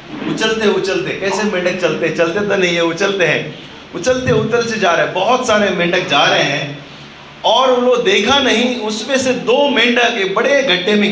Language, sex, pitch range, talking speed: Hindi, male, 200-240 Hz, 175 wpm